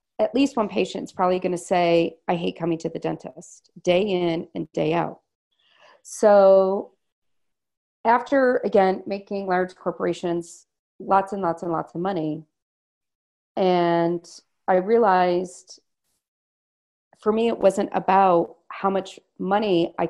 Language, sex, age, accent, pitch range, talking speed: English, female, 40-59, American, 170-200 Hz, 135 wpm